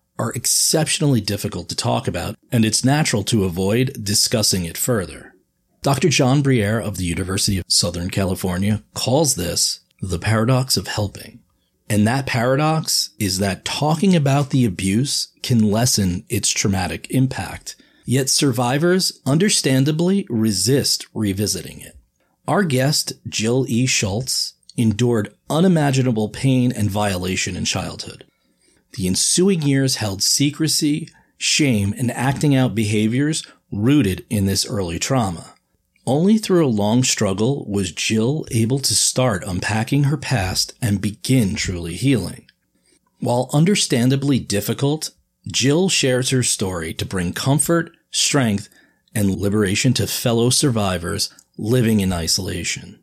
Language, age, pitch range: English, 40-59, 100-140 Hz